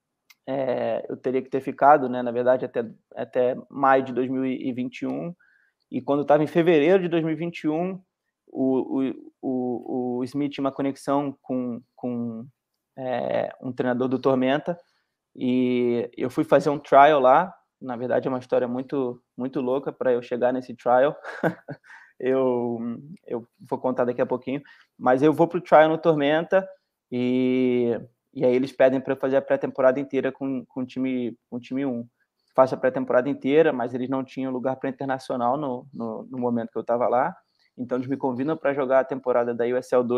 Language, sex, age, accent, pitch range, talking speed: Portuguese, male, 20-39, Brazilian, 125-145 Hz, 180 wpm